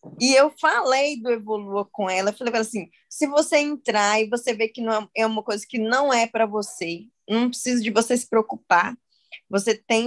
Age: 10-29